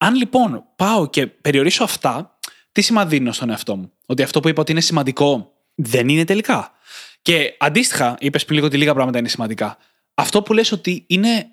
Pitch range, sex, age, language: 140-180 Hz, male, 20-39, Greek